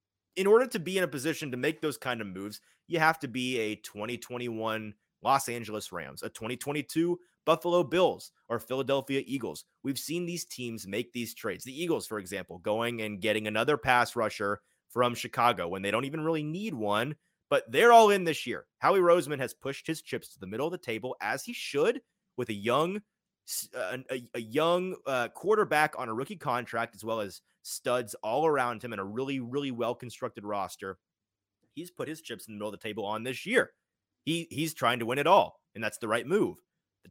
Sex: male